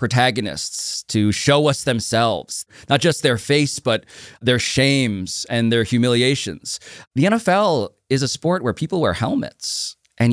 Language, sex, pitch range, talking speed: English, male, 100-135 Hz, 145 wpm